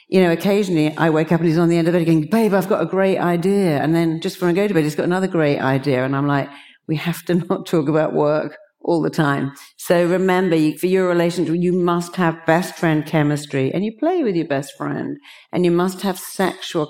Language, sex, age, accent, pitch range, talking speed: English, female, 50-69, British, 150-185 Hz, 245 wpm